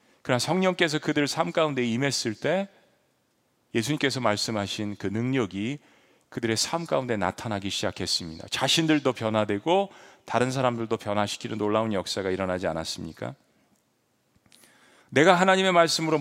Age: 40-59